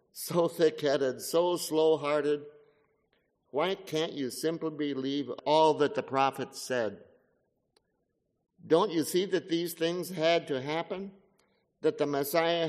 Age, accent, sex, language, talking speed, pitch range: 60-79, American, male, English, 125 wpm, 130-160 Hz